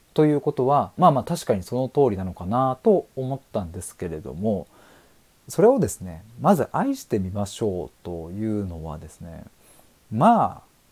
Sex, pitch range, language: male, 100-145 Hz, Japanese